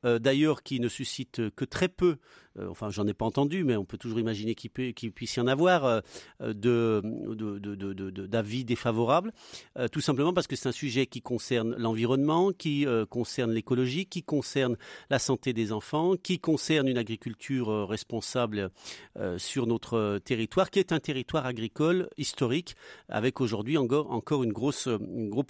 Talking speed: 180 wpm